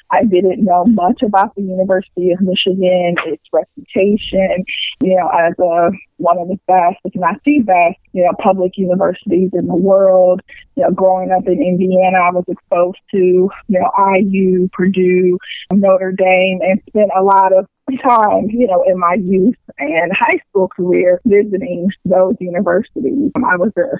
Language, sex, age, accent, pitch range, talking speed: English, female, 20-39, American, 180-210 Hz, 170 wpm